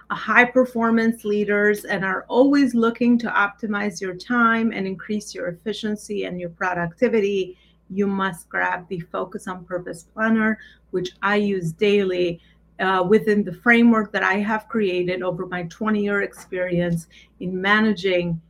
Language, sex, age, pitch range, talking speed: English, female, 30-49, 185-220 Hz, 145 wpm